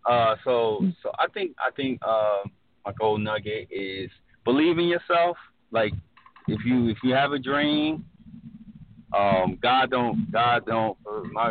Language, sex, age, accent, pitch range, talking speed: English, male, 30-49, American, 100-120 Hz, 150 wpm